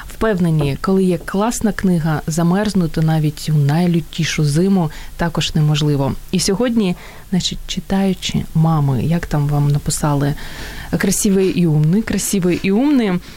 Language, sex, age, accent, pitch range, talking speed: Ukrainian, female, 20-39, native, 160-205 Hz, 115 wpm